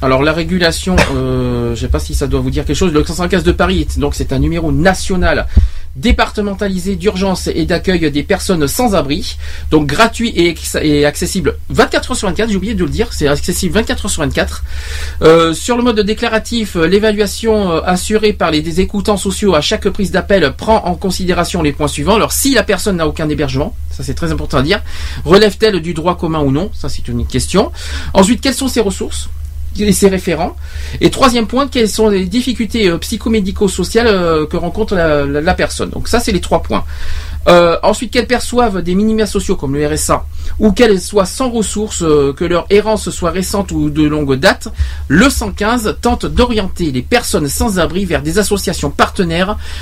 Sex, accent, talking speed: male, French, 190 wpm